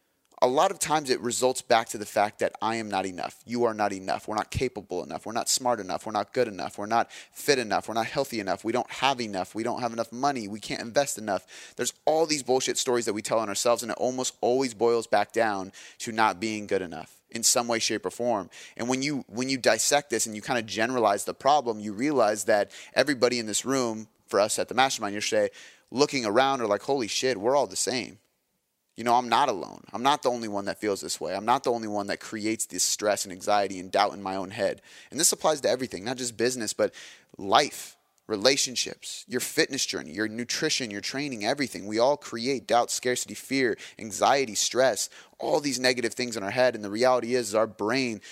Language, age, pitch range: English, 30-49, 110-130 Hz